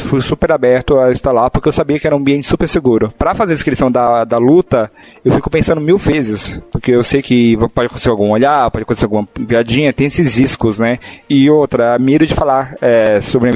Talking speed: 230 wpm